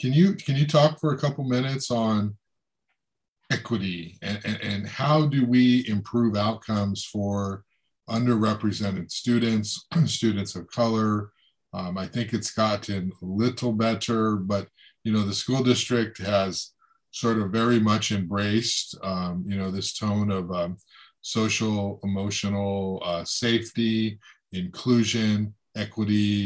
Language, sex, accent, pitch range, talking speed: English, male, American, 100-130 Hz, 130 wpm